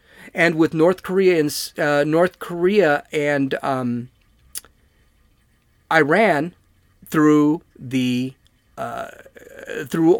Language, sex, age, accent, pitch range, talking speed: English, male, 40-59, American, 135-195 Hz, 90 wpm